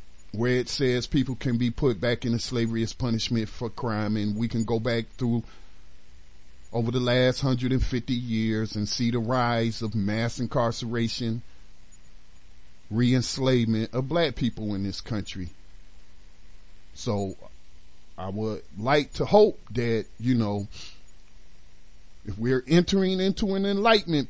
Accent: American